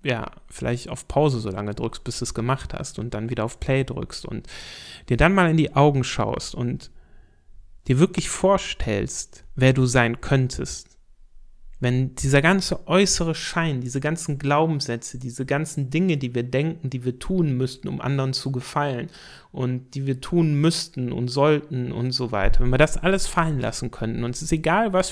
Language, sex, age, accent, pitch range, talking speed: German, male, 30-49, German, 120-155 Hz, 185 wpm